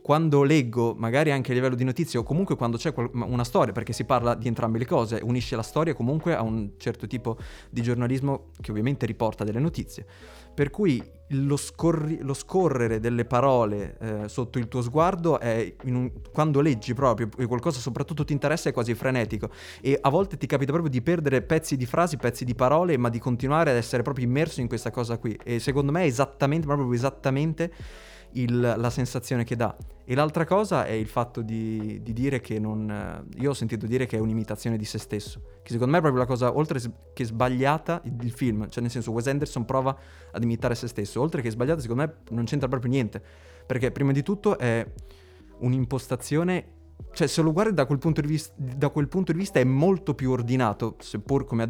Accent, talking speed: native, 205 wpm